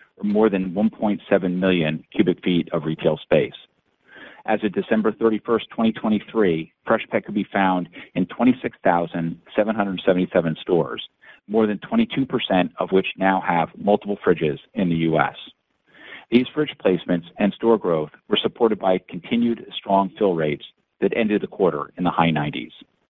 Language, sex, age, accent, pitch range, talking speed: English, male, 40-59, American, 90-115 Hz, 145 wpm